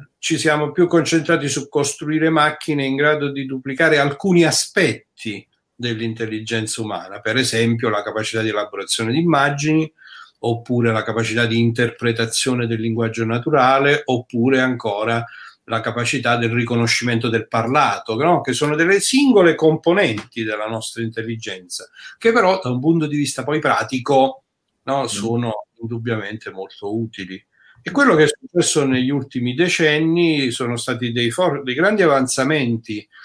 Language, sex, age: Italian, male, 50-69